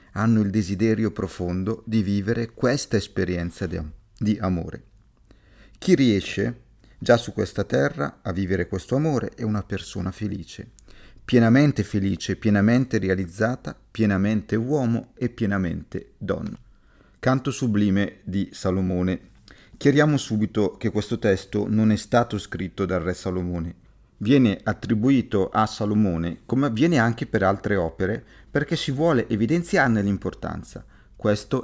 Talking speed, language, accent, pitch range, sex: 125 wpm, Italian, native, 95-115 Hz, male